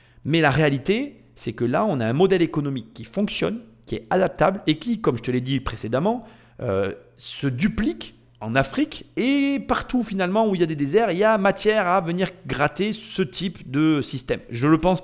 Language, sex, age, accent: French, male, 30-49, French